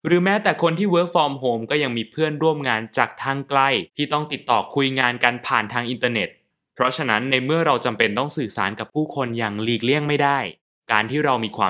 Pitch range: 110-150 Hz